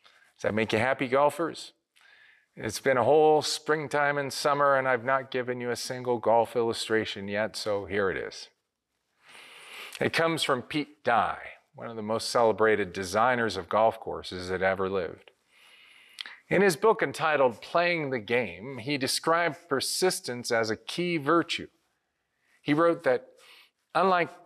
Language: English